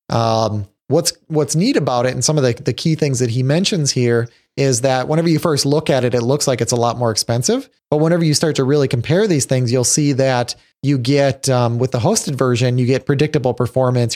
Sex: male